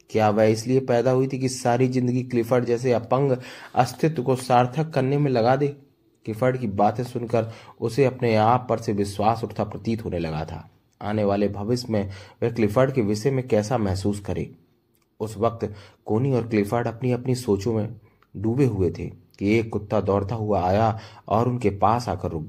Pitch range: 105-125 Hz